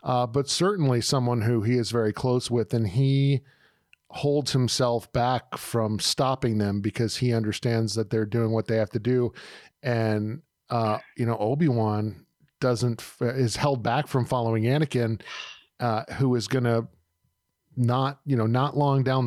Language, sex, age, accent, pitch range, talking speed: English, male, 40-59, American, 110-130 Hz, 160 wpm